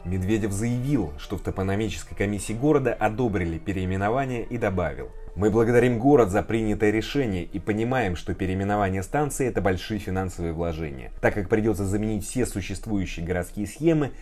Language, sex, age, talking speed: Russian, male, 20-39, 150 wpm